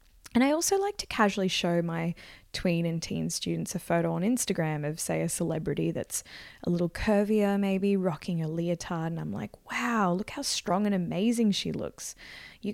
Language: English